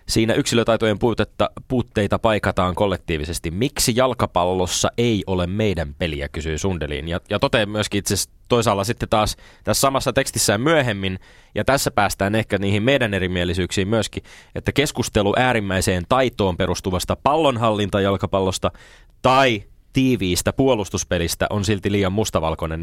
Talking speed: 120 wpm